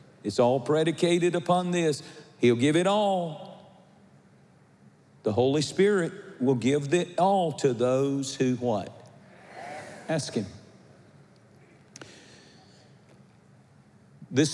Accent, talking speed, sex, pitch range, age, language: American, 95 wpm, male, 135-180 Hz, 50-69, English